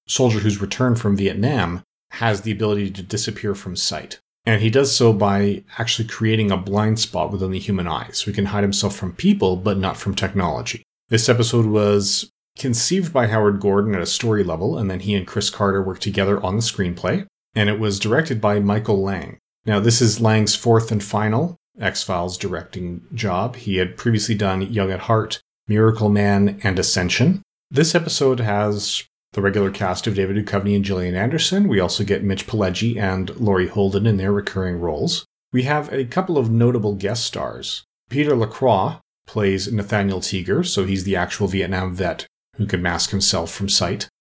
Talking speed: 185 wpm